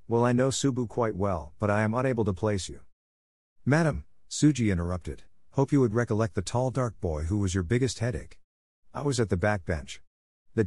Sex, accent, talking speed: male, American, 200 wpm